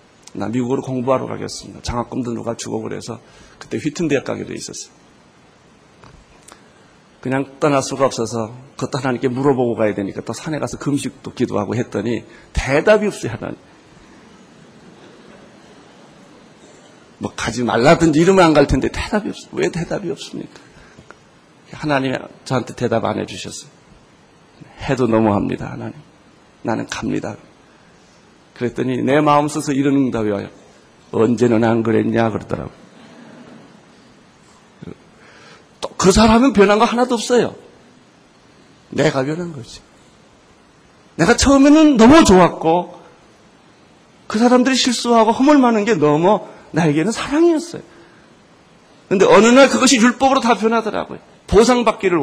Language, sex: Korean, male